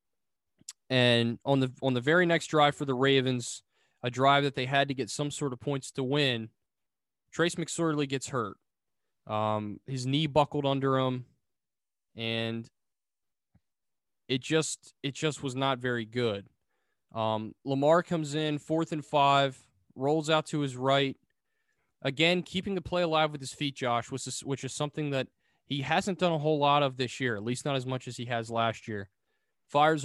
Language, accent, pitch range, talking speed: English, American, 125-155 Hz, 180 wpm